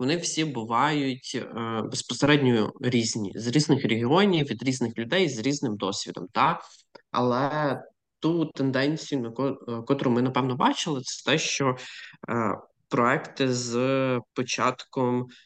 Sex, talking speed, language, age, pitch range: male, 125 wpm, Ukrainian, 20-39, 120-145 Hz